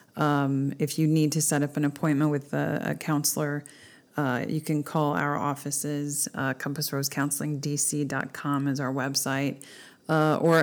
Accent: American